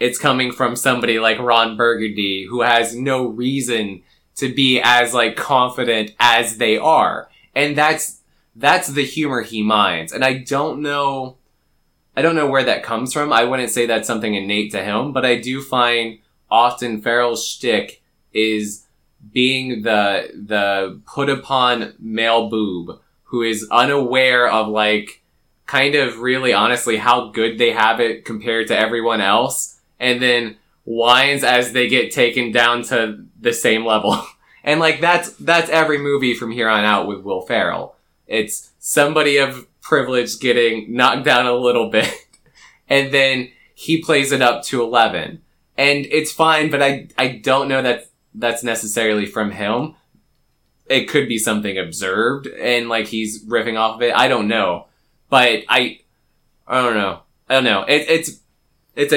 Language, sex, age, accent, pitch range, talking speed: English, male, 20-39, American, 115-135 Hz, 160 wpm